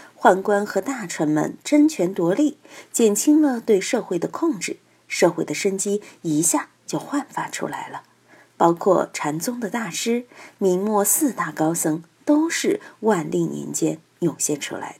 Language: Chinese